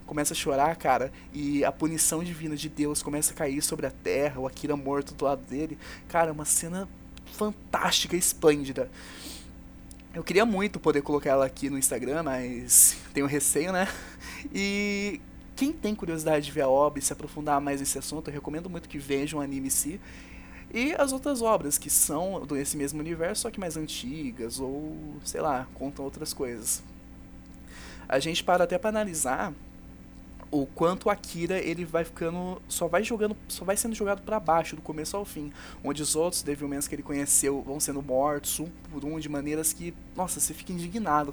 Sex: male